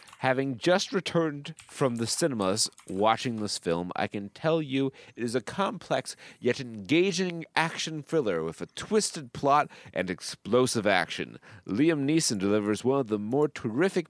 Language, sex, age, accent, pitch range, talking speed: English, male, 30-49, American, 105-155 Hz, 155 wpm